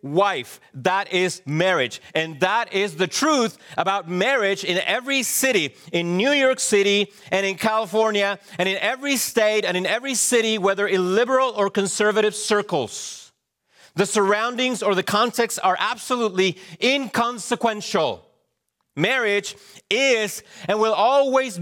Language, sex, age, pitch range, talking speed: English, male, 30-49, 170-225 Hz, 135 wpm